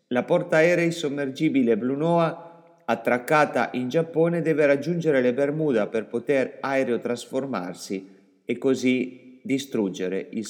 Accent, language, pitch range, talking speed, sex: native, Italian, 115-150 Hz, 115 wpm, male